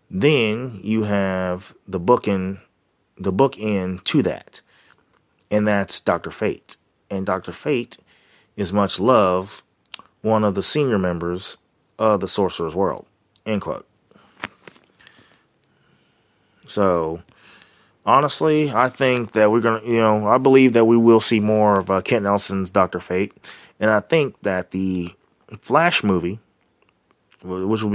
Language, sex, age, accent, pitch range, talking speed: English, male, 30-49, American, 95-110 Hz, 135 wpm